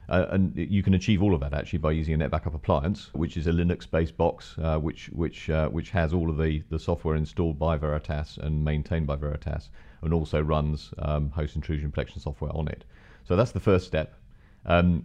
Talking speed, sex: 210 wpm, male